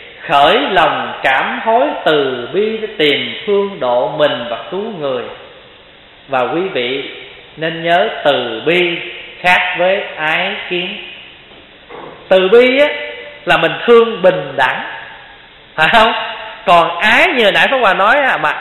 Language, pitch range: Vietnamese, 170-225 Hz